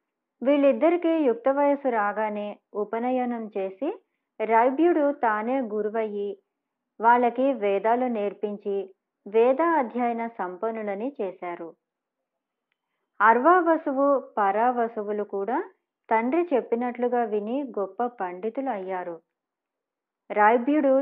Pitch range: 205-255 Hz